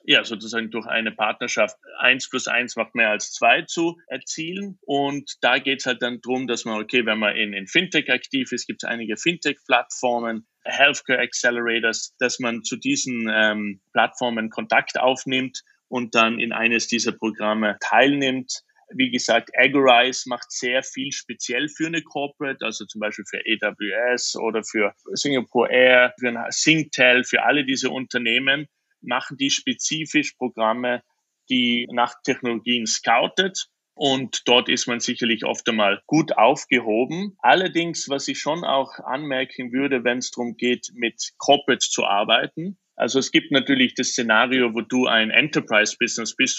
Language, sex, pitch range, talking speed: German, male, 115-135 Hz, 150 wpm